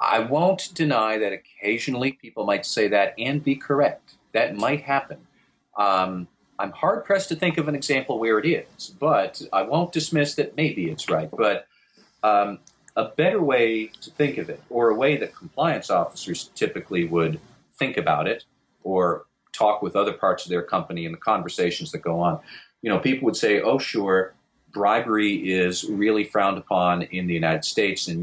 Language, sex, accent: English, male, American